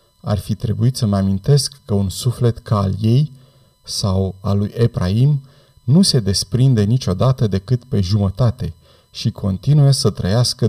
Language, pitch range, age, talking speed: Romanian, 100-125 Hz, 30-49, 150 wpm